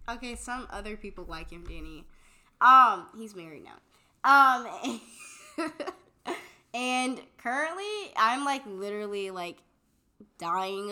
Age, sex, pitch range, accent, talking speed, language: 10-29, female, 195-250 Hz, American, 110 wpm, English